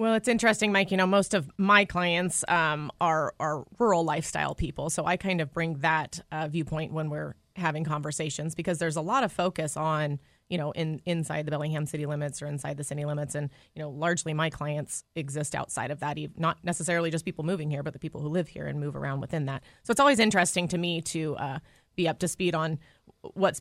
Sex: female